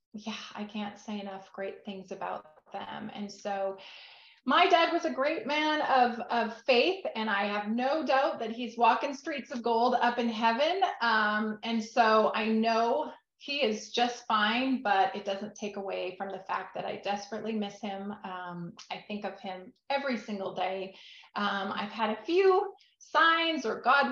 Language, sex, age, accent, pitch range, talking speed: English, female, 30-49, American, 210-265 Hz, 180 wpm